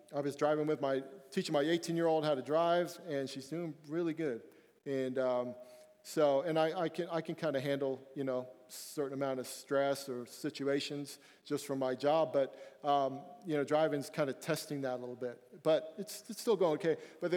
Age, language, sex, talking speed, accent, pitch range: 40-59, English, male, 210 wpm, American, 130-175 Hz